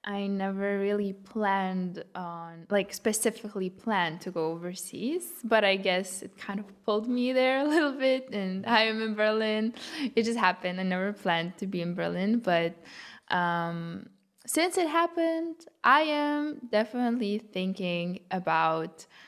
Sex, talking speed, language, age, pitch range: female, 150 wpm, English, 20-39, 190-225 Hz